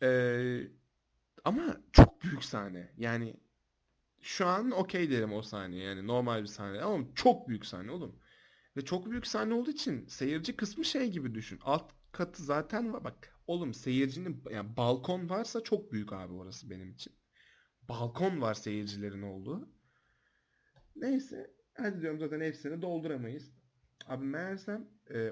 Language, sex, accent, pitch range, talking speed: Turkish, male, native, 110-175 Hz, 145 wpm